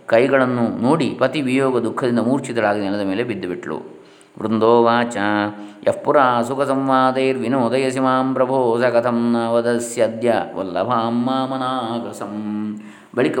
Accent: native